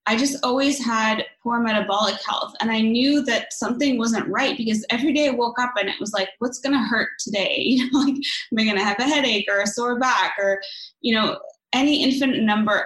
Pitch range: 210-270 Hz